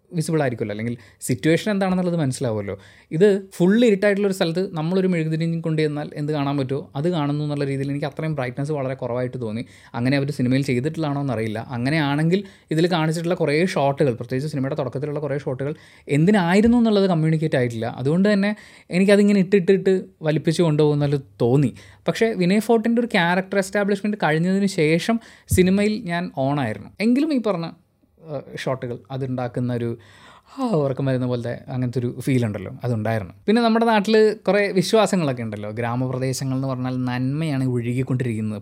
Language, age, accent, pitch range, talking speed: Malayalam, 20-39, native, 125-185 Hz, 140 wpm